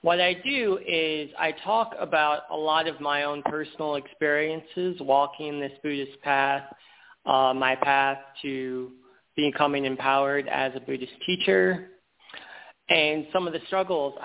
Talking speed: 140 wpm